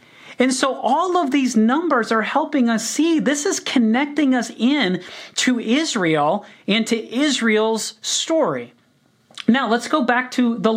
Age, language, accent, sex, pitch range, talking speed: 30-49, English, American, male, 165-235 Hz, 150 wpm